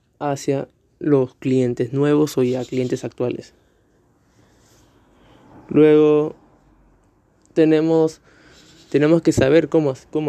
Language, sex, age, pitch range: Spanish, male, 20-39, 130-145 Hz